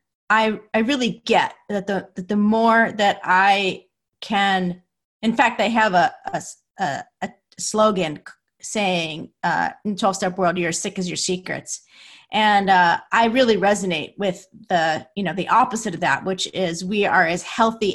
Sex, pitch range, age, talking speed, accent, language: female, 180-235 Hz, 30-49, 170 wpm, American, English